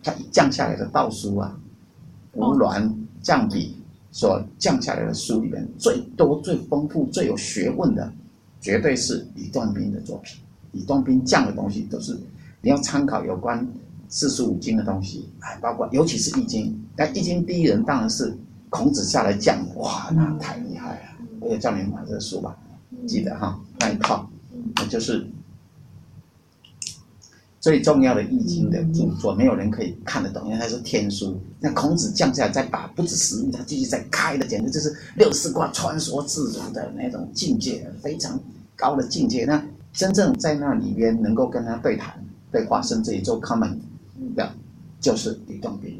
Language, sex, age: Chinese, male, 50-69